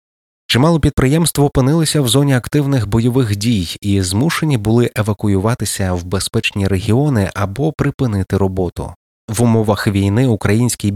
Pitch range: 95-125 Hz